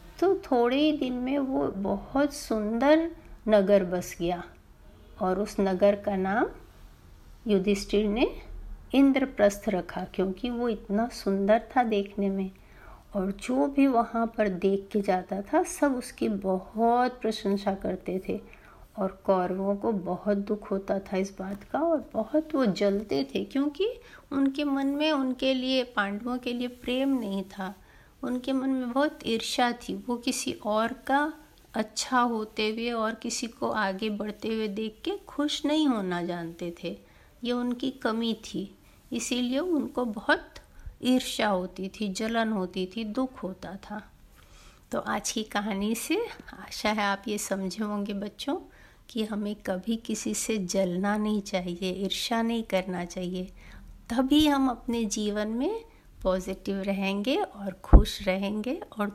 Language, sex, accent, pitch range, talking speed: Hindi, female, native, 195-255 Hz, 150 wpm